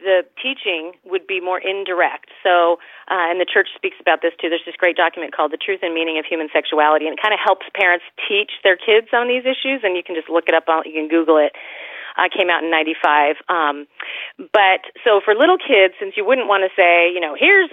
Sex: female